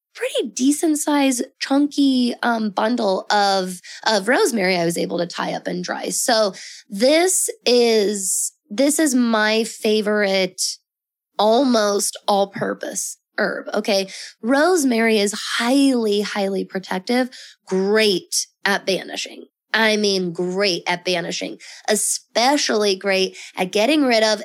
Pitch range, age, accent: 195-230 Hz, 20-39, American